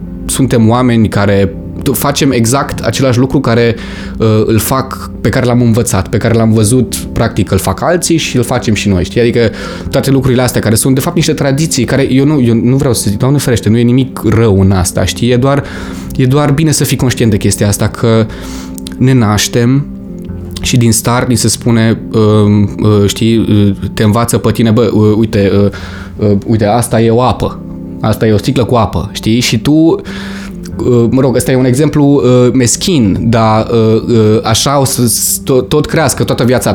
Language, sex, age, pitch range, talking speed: Romanian, male, 20-39, 105-130 Hz, 195 wpm